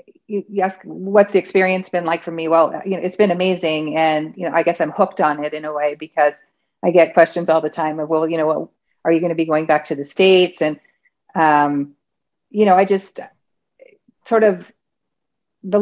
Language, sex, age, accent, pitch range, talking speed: English, female, 40-59, American, 155-185 Hz, 215 wpm